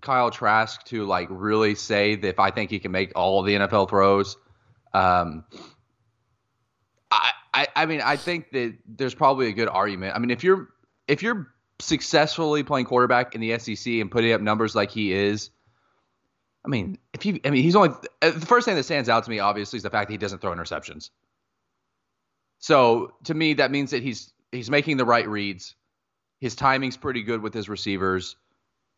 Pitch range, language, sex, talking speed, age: 105-130 Hz, English, male, 195 wpm, 20-39